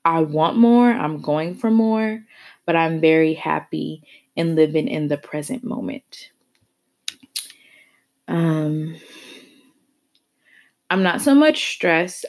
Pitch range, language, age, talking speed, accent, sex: 160-235 Hz, English, 20-39, 110 wpm, American, female